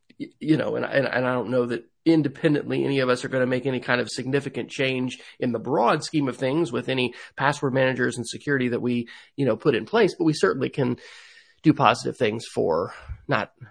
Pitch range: 125-150 Hz